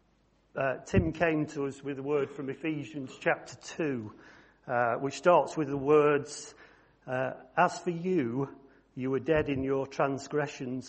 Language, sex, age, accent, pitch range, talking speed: English, male, 50-69, British, 125-150 Hz, 150 wpm